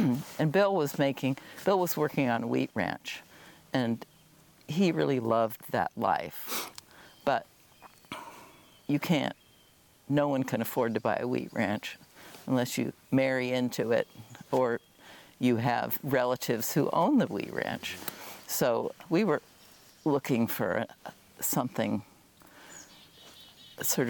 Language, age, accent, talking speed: English, 50-69, American, 125 wpm